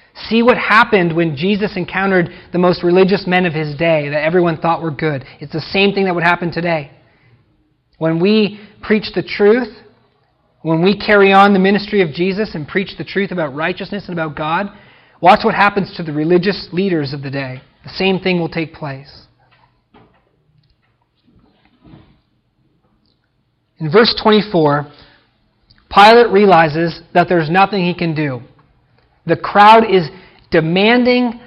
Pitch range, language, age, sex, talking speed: 160-205 Hz, English, 40-59, male, 150 wpm